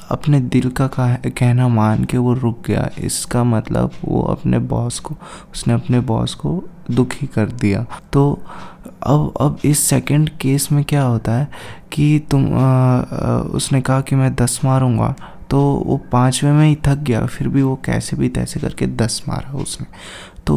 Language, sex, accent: Hindi, male, native